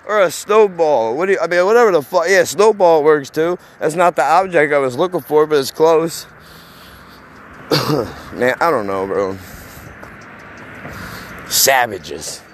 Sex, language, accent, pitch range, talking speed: male, English, American, 120-180 Hz, 140 wpm